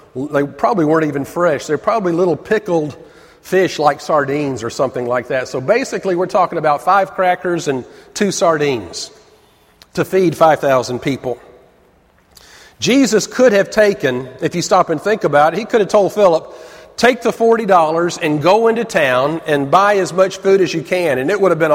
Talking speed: 180 wpm